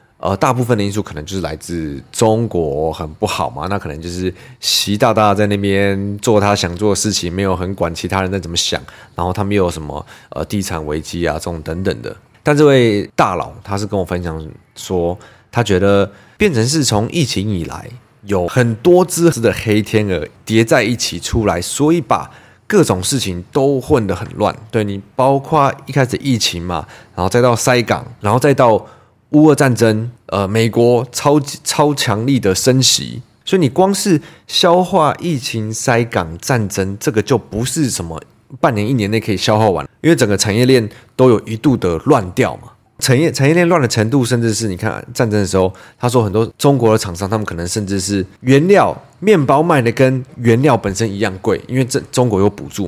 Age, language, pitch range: 20-39, Chinese, 95-130 Hz